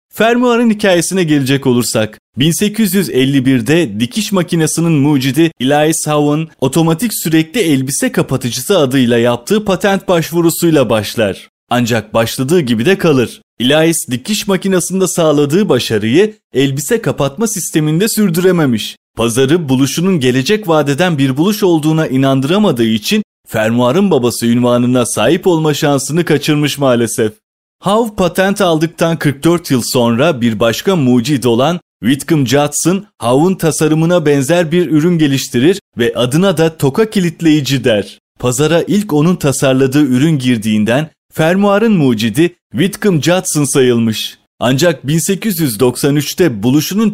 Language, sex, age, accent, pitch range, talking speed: Turkish, male, 30-49, native, 130-180 Hz, 110 wpm